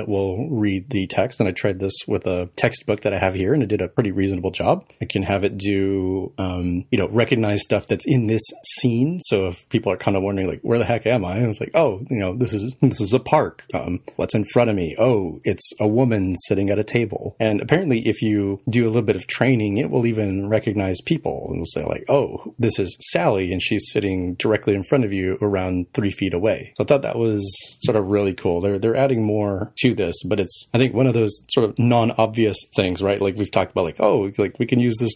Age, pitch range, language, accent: 30-49, 100-120 Hz, English, American